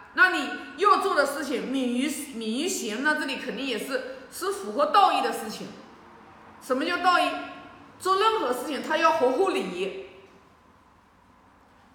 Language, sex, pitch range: Chinese, female, 250-370 Hz